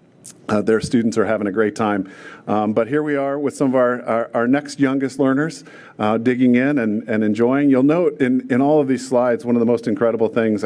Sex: male